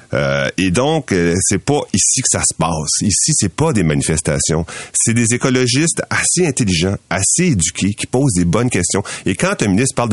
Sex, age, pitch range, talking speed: male, 40-59, 90-135 Hz, 195 wpm